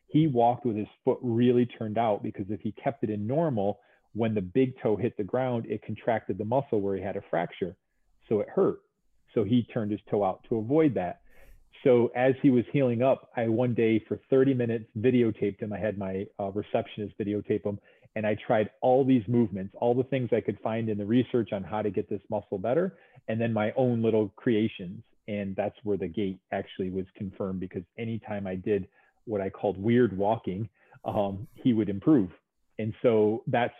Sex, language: male, English